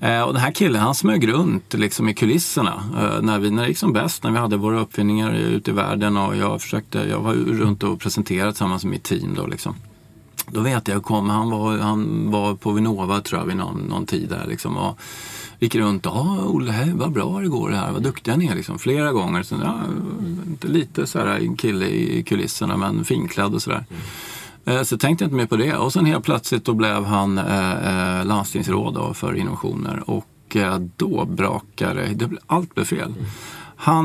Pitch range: 105-150 Hz